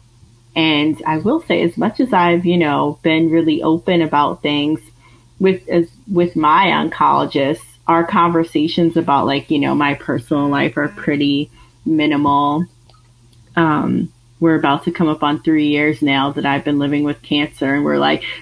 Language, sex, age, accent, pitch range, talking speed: English, female, 30-49, American, 145-165 Hz, 165 wpm